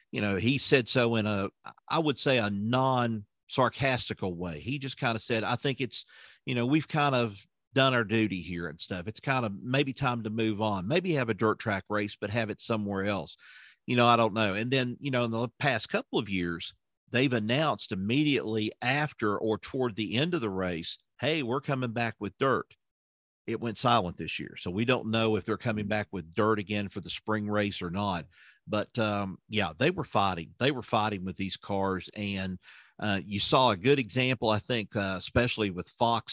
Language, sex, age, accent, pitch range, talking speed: English, male, 50-69, American, 100-120 Hz, 215 wpm